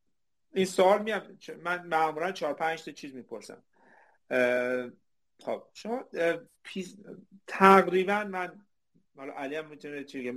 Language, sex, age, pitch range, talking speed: Persian, male, 50-69, 135-205 Hz, 110 wpm